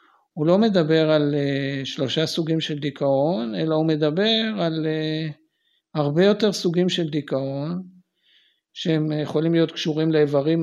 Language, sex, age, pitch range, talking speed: Hebrew, male, 60-79, 145-185 Hz, 125 wpm